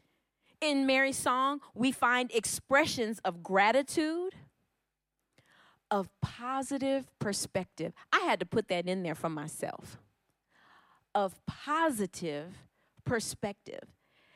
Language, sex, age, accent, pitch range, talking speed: English, female, 40-59, American, 195-305 Hz, 95 wpm